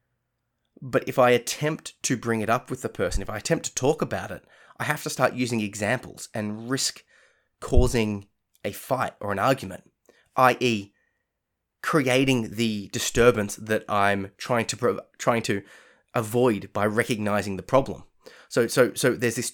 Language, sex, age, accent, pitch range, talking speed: English, male, 20-39, Australian, 105-135 Hz, 165 wpm